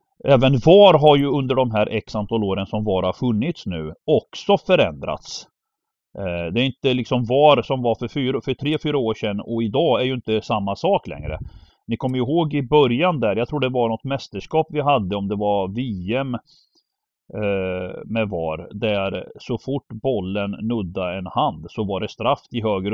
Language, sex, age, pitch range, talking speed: Swedish, male, 30-49, 100-135 Hz, 185 wpm